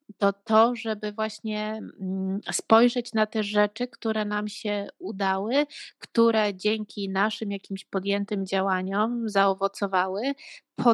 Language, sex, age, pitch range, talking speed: Polish, female, 20-39, 195-225 Hz, 110 wpm